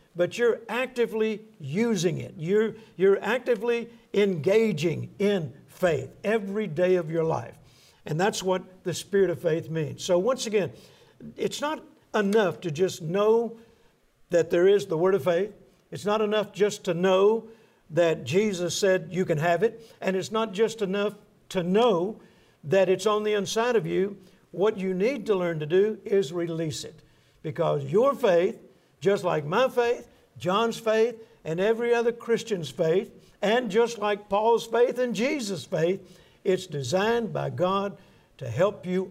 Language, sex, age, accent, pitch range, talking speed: English, male, 60-79, American, 175-220 Hz, 165 wpm